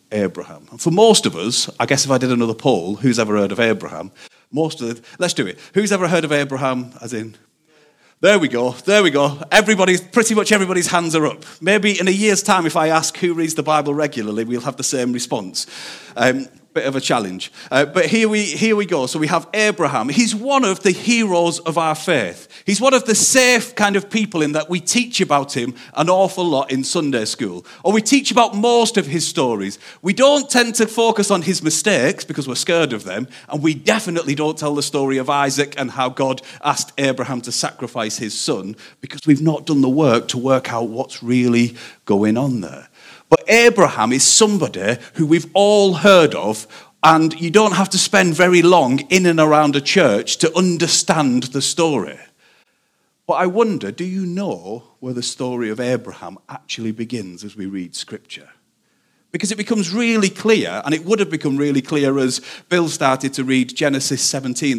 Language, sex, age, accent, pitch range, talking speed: English, male, 40-59, British, 130-190 Hz, 205 wpm